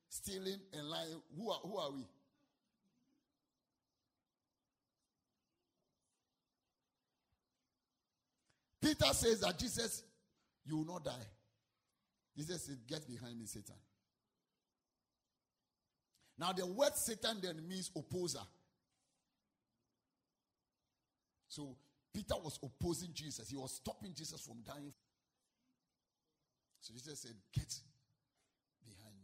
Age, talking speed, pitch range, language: 50-69, 90 wpm, 120-175 Hz, English